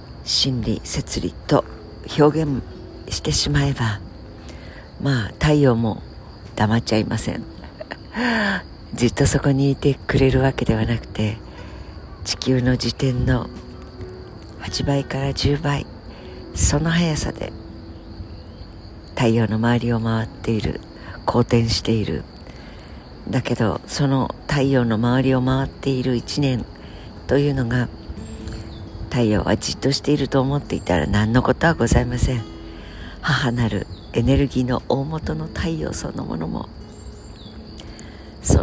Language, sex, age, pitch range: Japanese, female, 60-79, 90-130 Hz